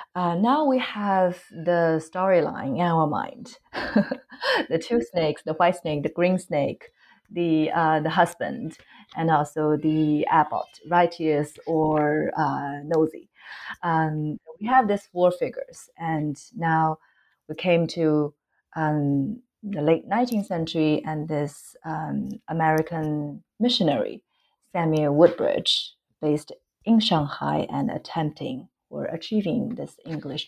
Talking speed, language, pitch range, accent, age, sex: 120 wpm, English, 155-200 Hz, Chinese, 30-49, female